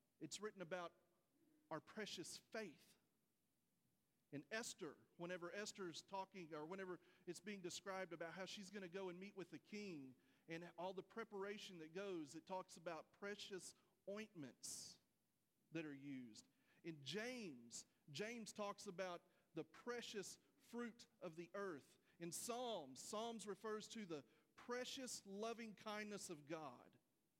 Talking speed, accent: 135 wpm, American